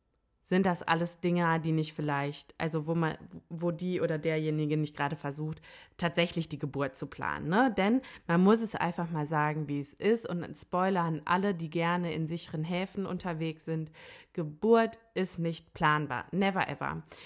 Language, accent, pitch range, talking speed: German, German, 160-190 Hz, 170 wpm